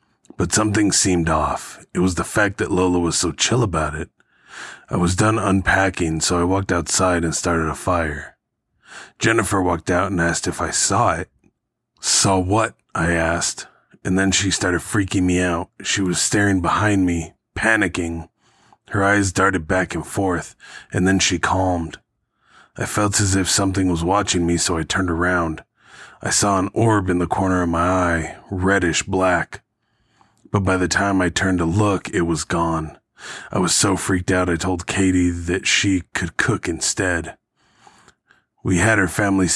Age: 20-39